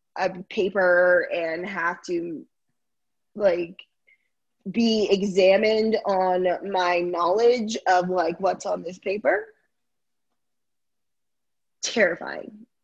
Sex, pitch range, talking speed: female, 180-225 Hz, 85 wpm